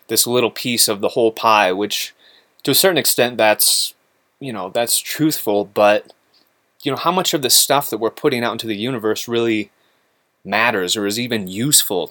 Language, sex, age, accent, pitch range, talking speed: English, male, 20-39, American, 110-130 Hz, 190 wpm